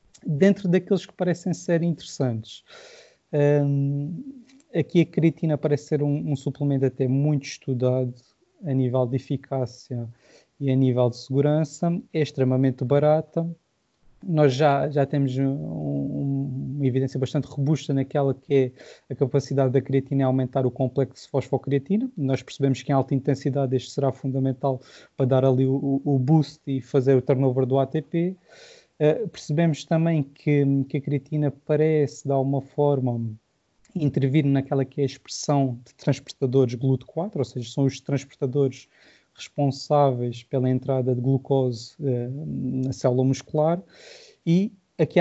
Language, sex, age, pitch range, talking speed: Portuguese, male, 20-39, 135-155 Hz, 145 wpm